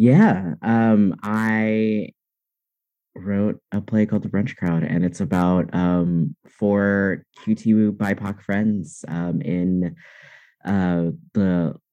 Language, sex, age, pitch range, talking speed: English, male, 30-49, 90-115 Hz, 110 wpm